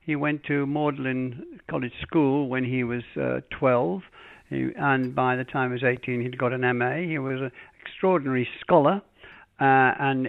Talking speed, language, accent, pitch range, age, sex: 170 wpm, English, British, 125-160 Hz, 60-79, male